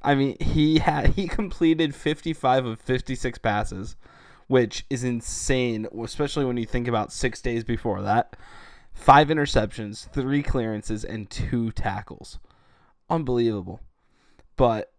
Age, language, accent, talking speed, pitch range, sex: 20-39, English, American, 125 wpm, 110-135 Hz, male